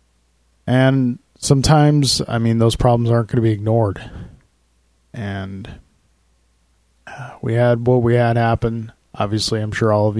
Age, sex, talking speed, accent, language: 20-39, male, 135 wpm, American, English